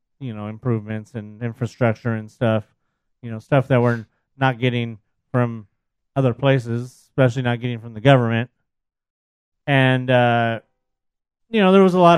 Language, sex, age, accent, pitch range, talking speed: English, male, 30-49, American, 115-140 Hz, 160 wpm